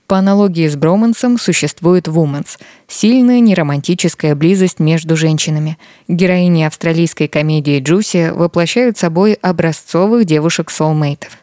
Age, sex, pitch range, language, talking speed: 20-39, female, 155-185 Hz, Russian, 110 wpm